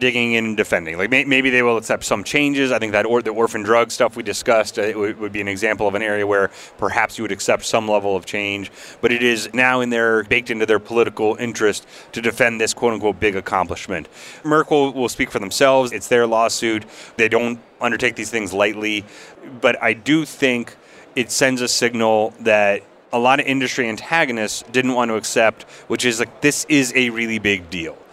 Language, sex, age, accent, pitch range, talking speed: English, male, 30-49, American, 100-120 Hz, 205 wpm